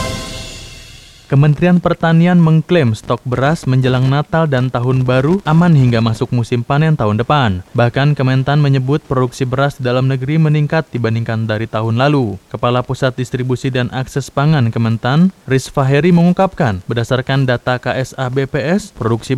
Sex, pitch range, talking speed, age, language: male, 120-155 Hz, 140 wpm, 20-39, Indonesian